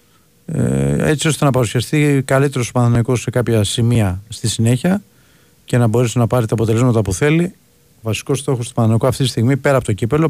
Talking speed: 190 wpm